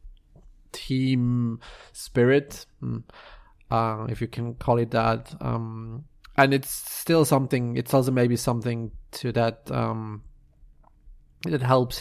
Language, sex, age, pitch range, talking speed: English, male, 30-49, 115-130 Hz, 115 wpm